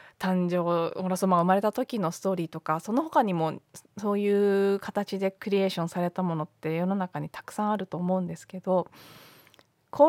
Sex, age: female, 20-39